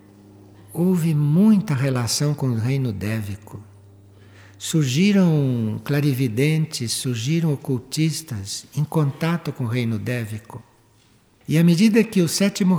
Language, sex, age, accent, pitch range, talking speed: Portuguese, male, 60-79, Brazilian, 110-175 Hz, 110 wpm